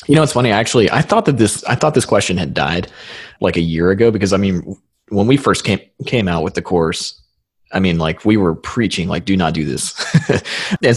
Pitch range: 85-105 Hz